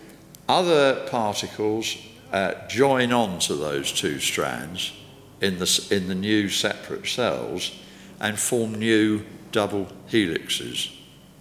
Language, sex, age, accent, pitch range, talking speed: English, male, 60-79, British, 105-145 Hz, 100 wpm